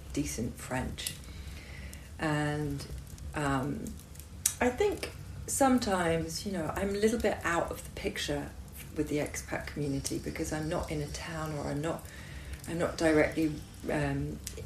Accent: British